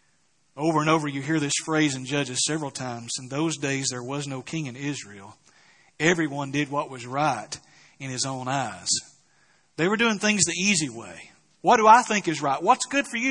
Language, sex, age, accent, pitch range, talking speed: English, male, 40-59, American, 145-205 Hz, 205 wpm